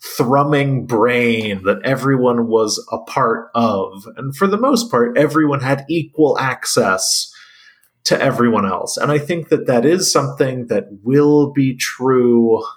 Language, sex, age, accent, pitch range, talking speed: English, male, 30-49, American, 110-145 Hz, 145 wpm